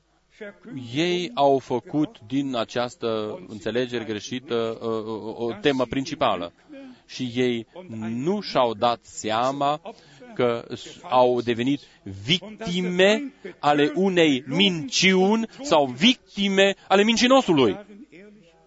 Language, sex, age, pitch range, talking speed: Romanian, male, 40-59, 120-180 Hz, 95 wpm